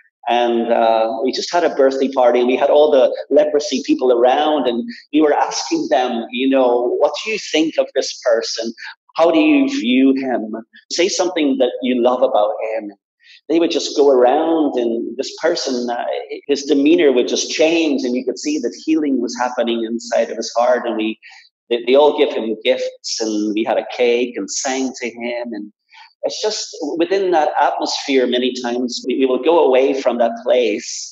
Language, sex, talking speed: English, male, 190 wpm